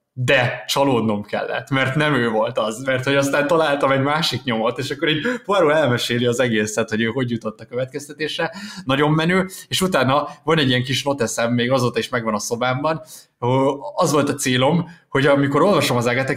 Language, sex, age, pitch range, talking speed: Hungarian, male, 20-39, 110-145 Hz, 190 wpm